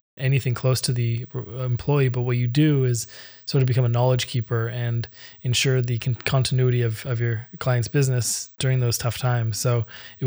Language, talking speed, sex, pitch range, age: English, 180 wpm, male, 120-130 Hz, 20-39